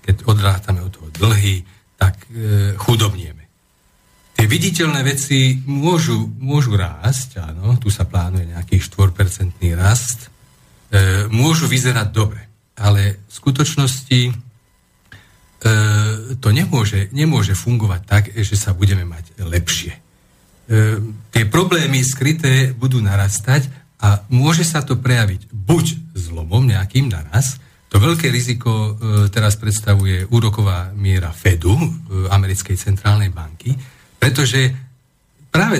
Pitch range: 95-130 Hz